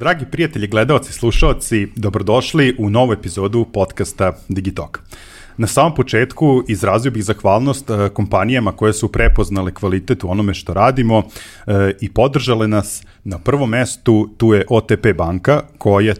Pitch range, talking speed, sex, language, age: 95-110 Hz, 130 wpm, male, English, 30-49